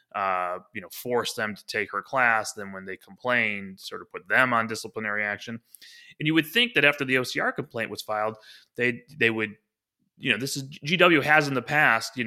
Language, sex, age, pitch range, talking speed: English, male, 20-39, 110-145 Hz, 215 wpm